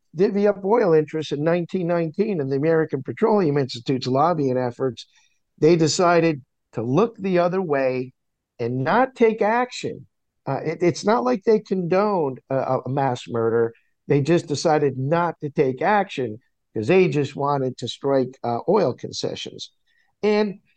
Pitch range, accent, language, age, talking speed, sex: 145-205 Hz, American, English, 50-69, 145 wpm, male